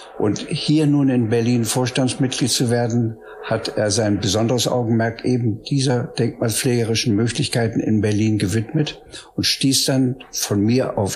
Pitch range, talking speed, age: 105-125 Hz, 140 wpm, 60-79